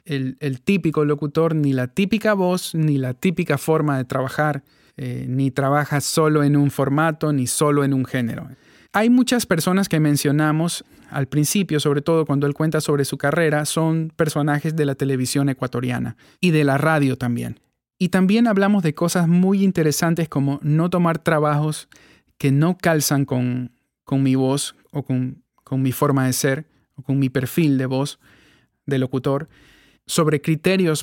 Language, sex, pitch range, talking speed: Spanish, male, 135-165 Hz, 170 wpm